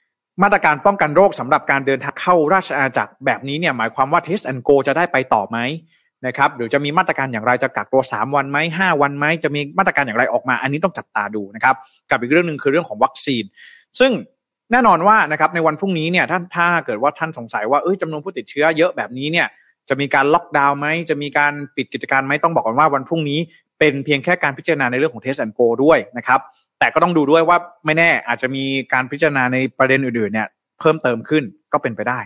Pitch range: 130-165 Hz